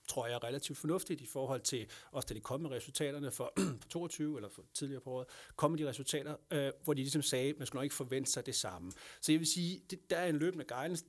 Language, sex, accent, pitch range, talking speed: Danish, male, native, 130-165 Hz, 260 wpm